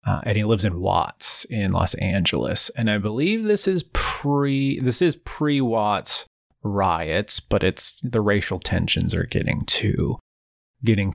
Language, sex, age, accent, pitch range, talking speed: English, male, 30-49, American, 95-120 Hz, 145 wpm